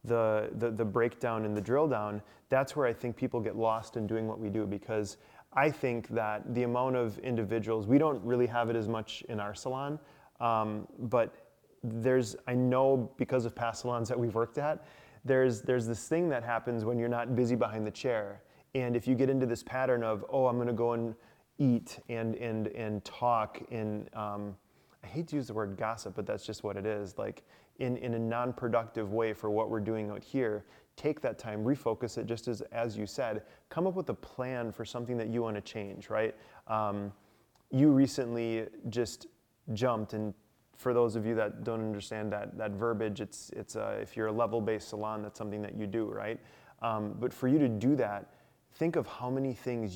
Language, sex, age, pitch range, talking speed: English, male, 30-49, 110-125 Hz, 210 wpm